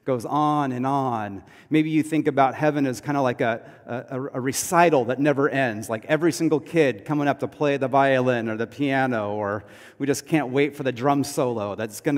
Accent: American